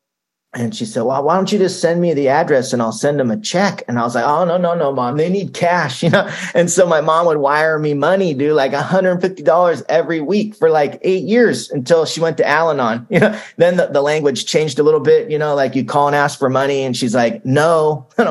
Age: 30-49